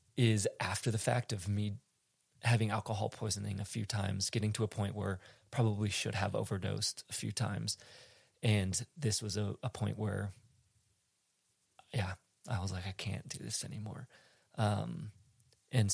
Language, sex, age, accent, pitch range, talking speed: English, male, 20-39, American, 100-115 Hz, 160 wpm